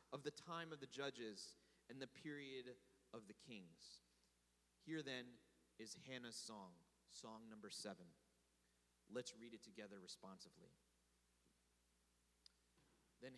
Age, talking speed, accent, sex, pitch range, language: 30-49, 115 wpm, American, male, 90-135 Hz, English